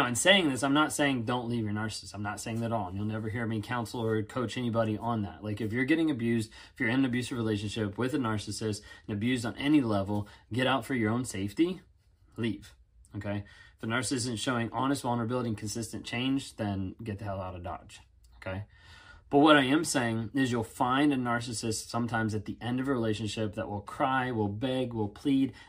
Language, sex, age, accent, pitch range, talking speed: English, male, 20-39, American, 105-140 Hz, 225 wpm